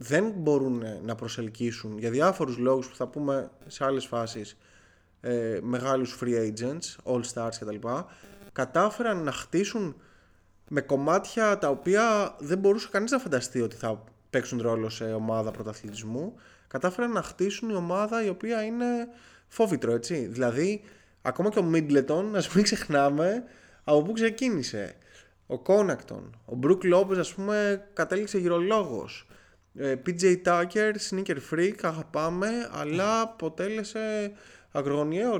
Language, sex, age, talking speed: Greek, male, 20-39, 130 wpm